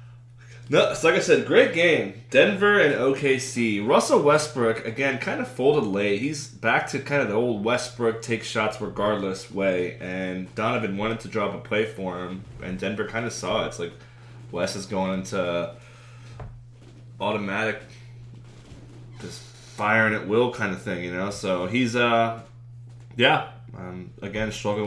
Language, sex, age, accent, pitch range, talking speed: English, male, 20-39, American, 105-120 Hz, 165 wpm